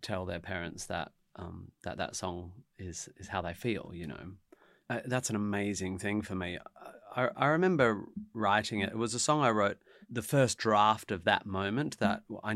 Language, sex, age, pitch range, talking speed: English, male, 30-49, 95-110 Hz, 195 wpm